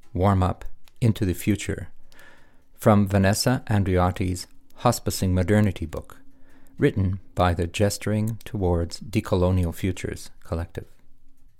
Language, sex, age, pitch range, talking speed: English, male, 50-69, 90-105 Hz, 95 wpm